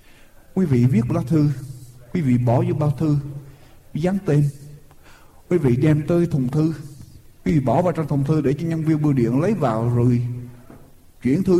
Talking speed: 190 wpm